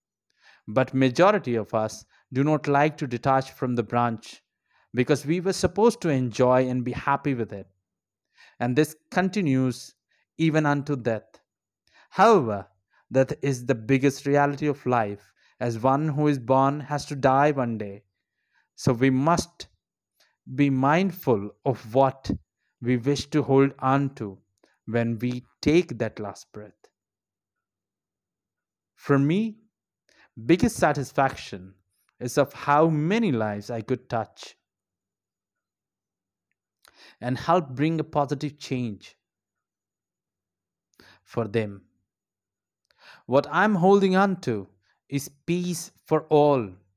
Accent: native